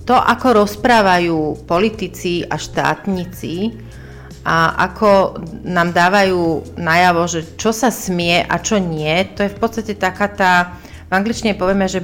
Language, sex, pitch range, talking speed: Slovak, female, 175-215 Hz, 140 wpm